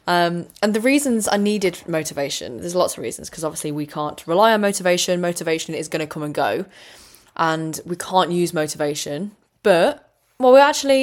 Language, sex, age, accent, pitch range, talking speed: English, female, 10-29, British, 165-205 Hz, 185 wpm